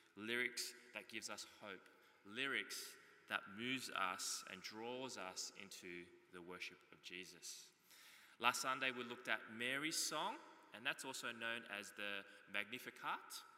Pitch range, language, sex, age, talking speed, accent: 105-135 Hz, English, male, 20-39, 135 wpm, Australian